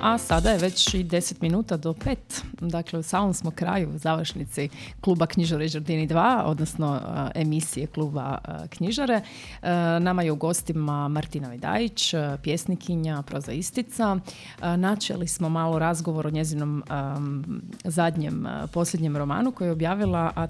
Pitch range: 160-205 Hz